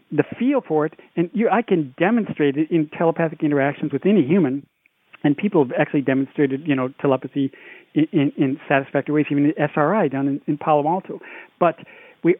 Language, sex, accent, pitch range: English, male, American, 140-175 Hz